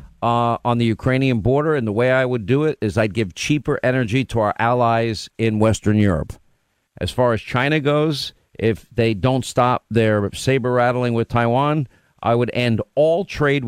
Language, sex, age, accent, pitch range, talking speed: English, male, 50-69, American, 115-135 Hz, 185 wpm